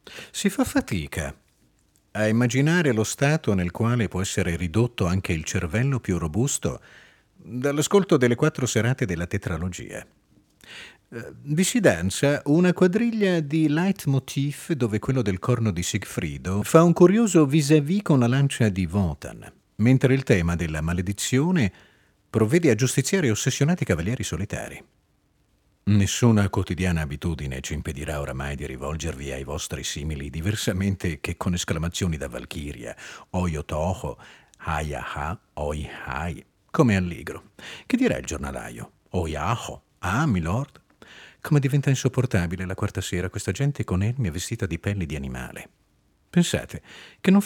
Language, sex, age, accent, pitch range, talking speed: Italian, male, 40-59, native, 85-135 Hz, 135 wpm